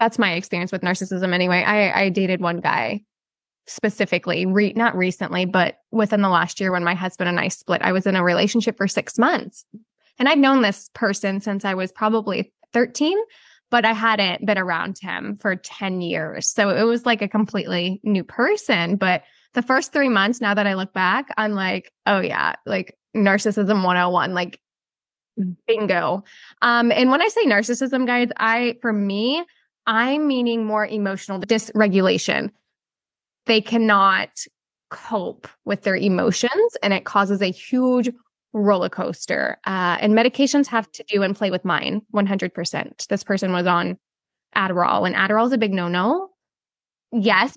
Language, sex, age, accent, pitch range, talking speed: English, female, 10-29, American, 190-230 Hz, 165 wpm